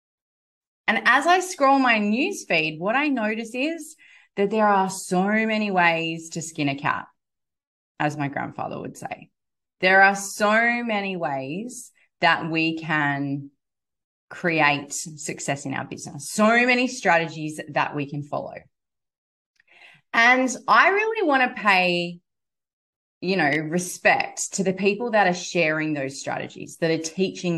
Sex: female